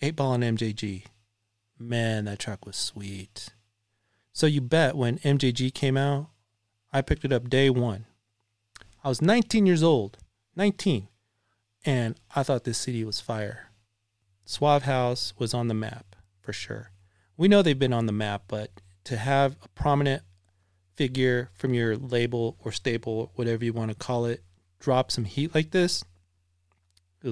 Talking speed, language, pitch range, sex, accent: 160 wpm, English, 105-140 Hz, male, American